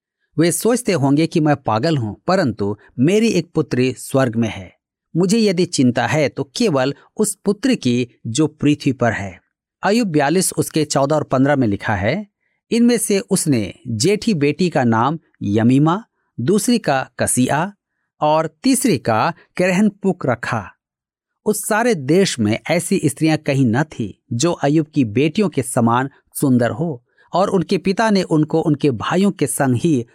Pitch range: 125-185 Hz